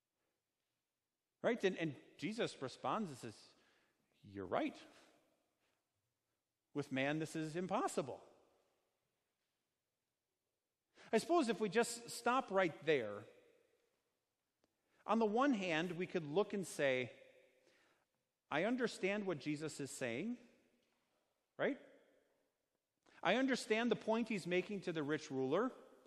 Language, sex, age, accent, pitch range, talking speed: English, male, 40-59, American, 185-245 Hz, 110 wpm